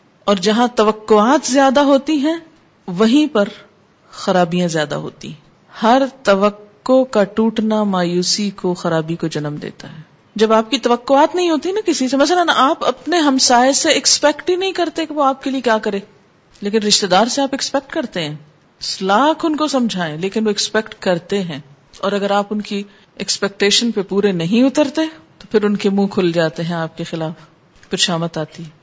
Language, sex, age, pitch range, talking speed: Urdu, female, 50-69, 180-245 Hz, 185 wpm